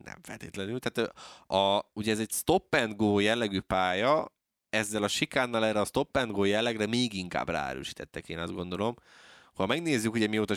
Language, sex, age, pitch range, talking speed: Hungarian, male, 20-39, 90-115 Hz, 175 wpm